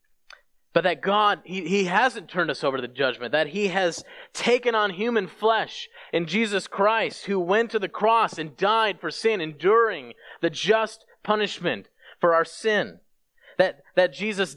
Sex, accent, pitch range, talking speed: male, American, 185-225 Hz, 170 wpm